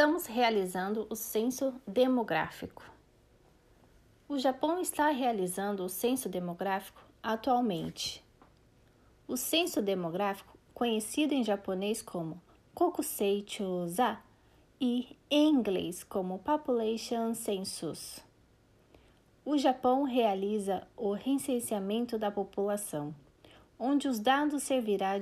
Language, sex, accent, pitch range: Japanese, female, Brazilian, 200-270 Hz